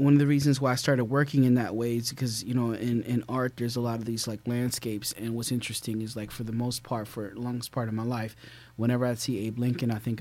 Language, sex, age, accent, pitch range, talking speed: English, male, 30-49, American, 115-130 Hz, 280 wpm